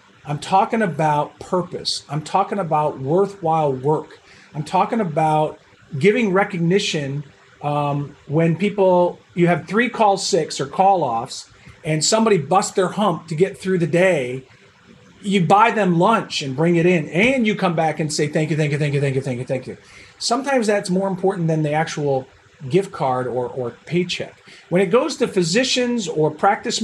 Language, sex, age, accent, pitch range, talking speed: English, male, 40-59, American, 155-200 Hz, 180 wpm